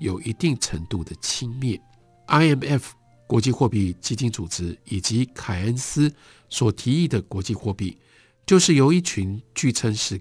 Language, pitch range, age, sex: Chinese, 95-130 Hz, 50-69, male